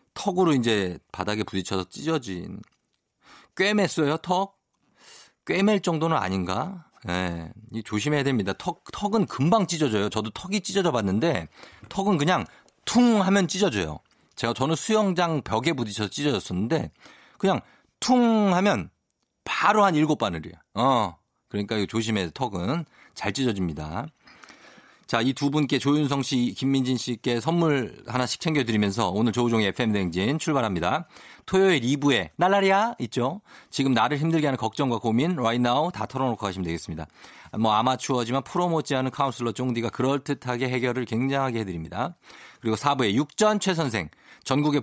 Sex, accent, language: male, native, Korean